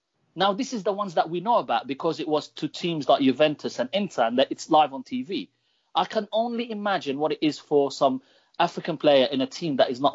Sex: male